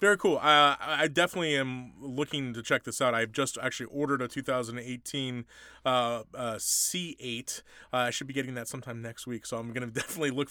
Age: 30-49